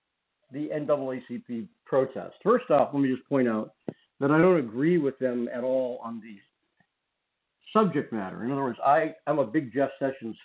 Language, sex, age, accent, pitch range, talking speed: English, male, 50-69, American, 125-155 Hz, 170 wpm